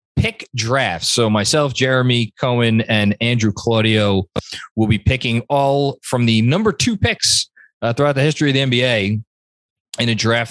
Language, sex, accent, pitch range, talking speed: English, male, American, 100-135 Hz, 160 wpm